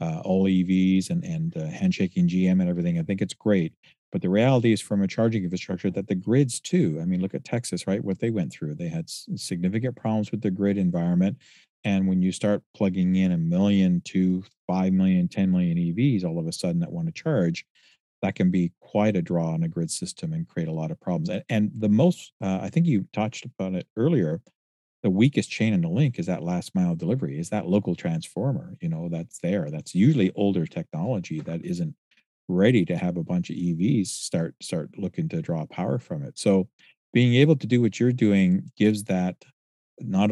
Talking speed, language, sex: 215 wpm, English, male